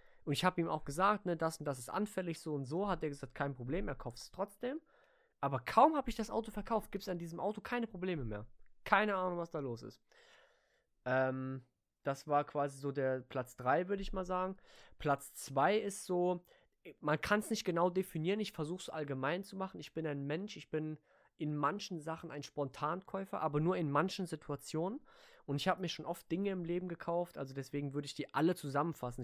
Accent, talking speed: German, 220 wpm